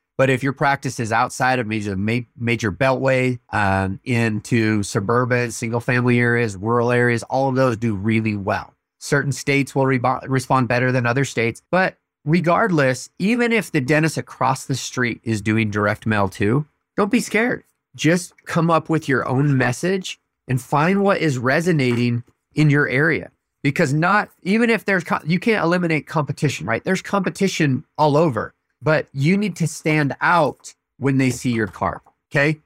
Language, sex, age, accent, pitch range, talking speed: English, male, 30-49, American, 120-160 Hz, 165 wpm